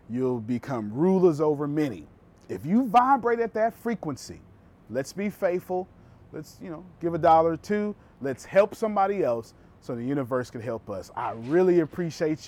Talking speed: 170 wpm